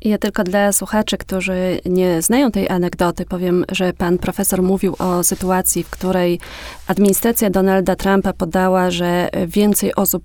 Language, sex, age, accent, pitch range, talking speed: Polish, female, 30-49, native, 180-205 Hz, 145 wpm